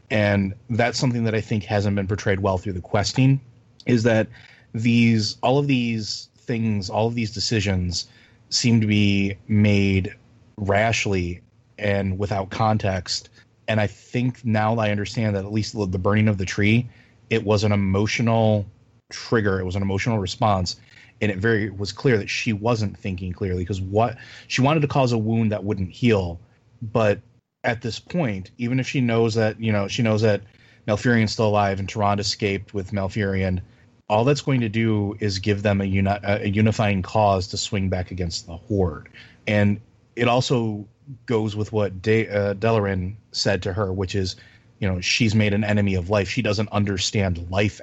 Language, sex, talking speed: English, male, 180 wpm